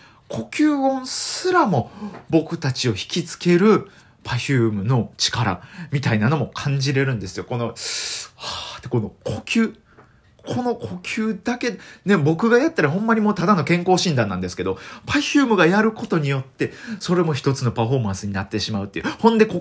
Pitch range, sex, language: 125-180 Hz, male, Japanese